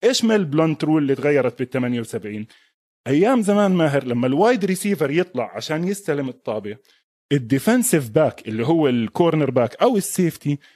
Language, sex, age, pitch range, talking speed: Arabic, male, 20-39, 135-190 Hz, 145 wpm